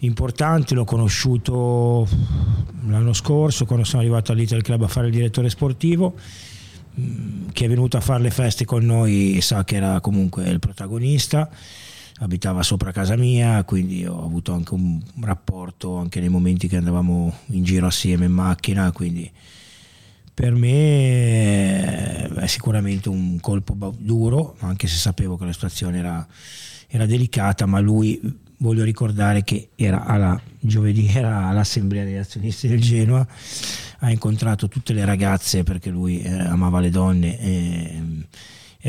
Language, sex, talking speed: Italian, male, 145 wpm